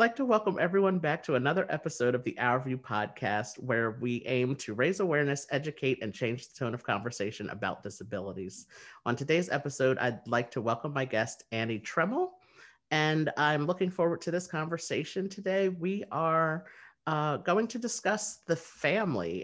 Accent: American